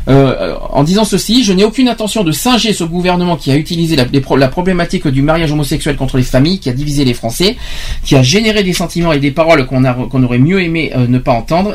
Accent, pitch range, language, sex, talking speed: French, 135-180 Hz, French, male, 245 wpm